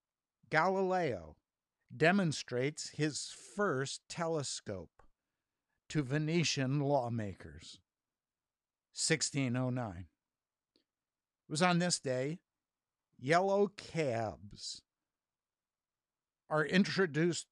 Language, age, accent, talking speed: English, 60-79, American, 60 wpm